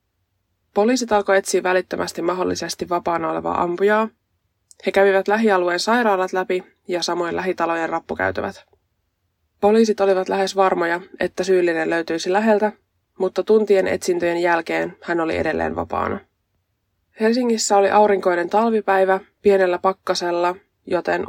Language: Finnish